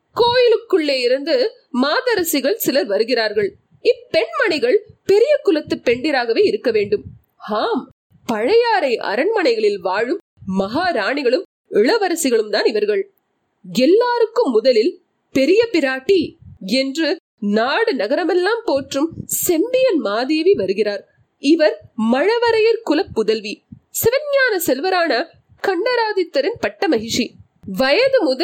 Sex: female